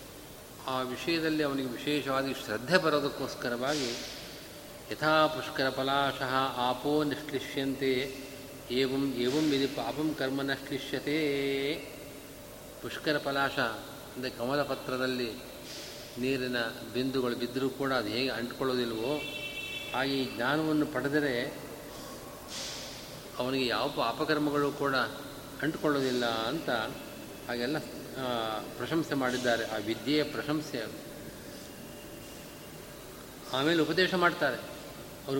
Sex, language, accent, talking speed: male, Kannada, native, 80 wpm